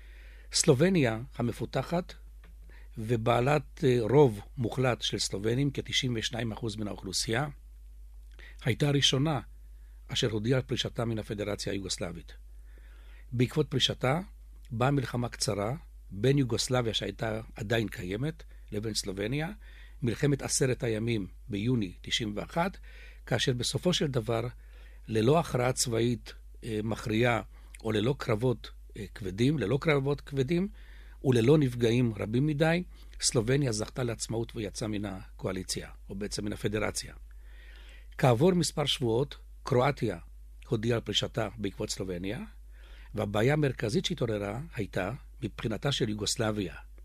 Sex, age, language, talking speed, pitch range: male, 60-79, Hebrew, 100 wpm, 105-135 Hz